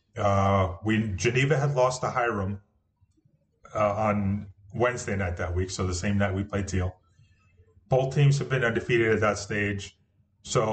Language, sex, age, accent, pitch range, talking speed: English, male, 30-49, American, 95-115 Hz, 160 wpm